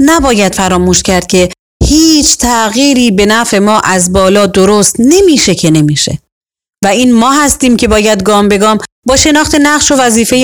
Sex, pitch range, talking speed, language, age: female, 205-285 Hz, 160 wpm, Persian, 30-49